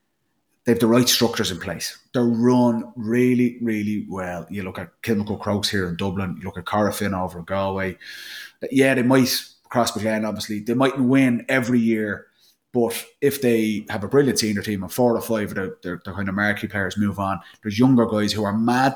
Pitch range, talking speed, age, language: 100-120 Hz, 200 wpm, 30-49, English